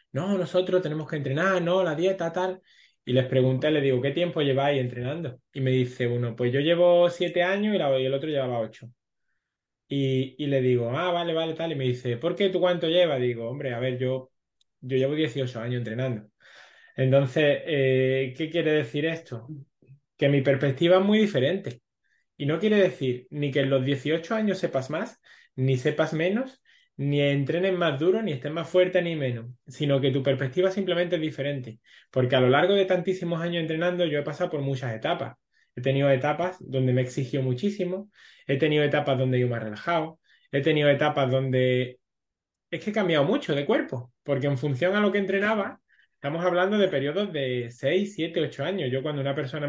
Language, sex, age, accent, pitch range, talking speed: Spanish, male, 20-39, Spanish, 130-175 Hz, 200 wpm